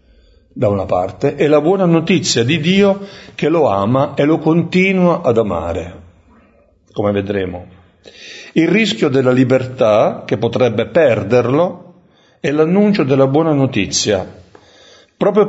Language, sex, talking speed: Italian, male, 125 wpm